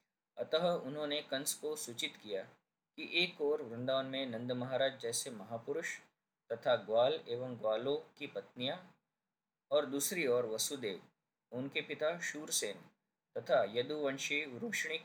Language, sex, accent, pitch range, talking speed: Hindi, male, native, 125-155 Hz, 125 wpm